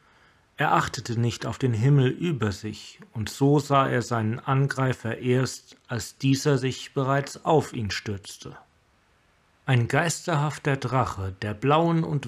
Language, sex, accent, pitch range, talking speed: German, male, German, 110-140 Hz, 135 wpm